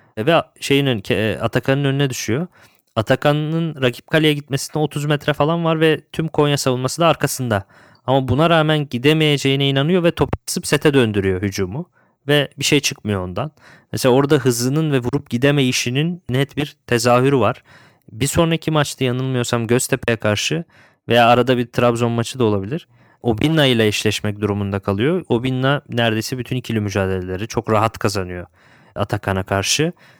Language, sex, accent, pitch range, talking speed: Turkish, male, native, 115-145 Hz, 145 wpm